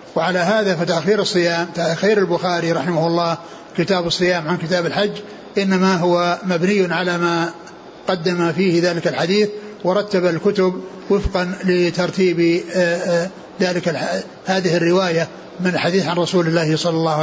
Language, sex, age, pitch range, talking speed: Arabic, male, 60-79, 175-195 Hz, 130 wpm